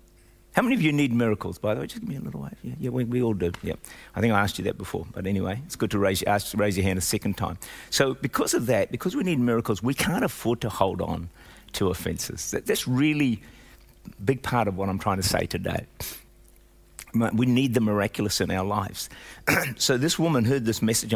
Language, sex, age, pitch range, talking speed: English, male, 50-69, 95-120 Hz, 240 wpm